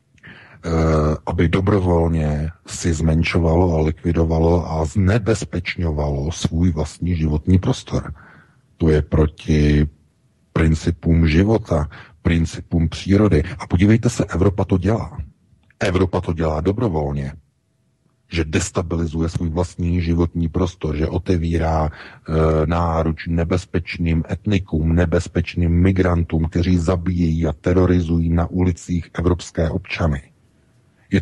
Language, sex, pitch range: Czech, male, 80-95 Hz